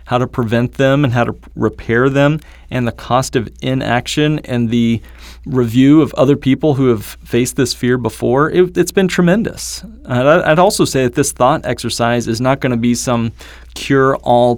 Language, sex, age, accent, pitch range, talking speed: English, male, 30-49, American, 115-145 Hz, 180 wpm